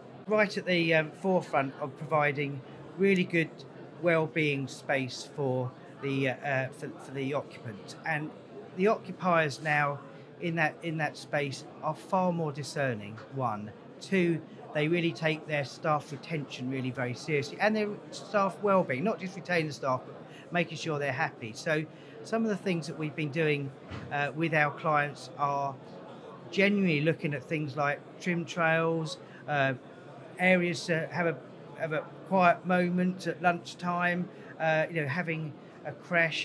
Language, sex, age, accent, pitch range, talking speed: English, male, 40-59, British, 140-170 Hz, 155 wpm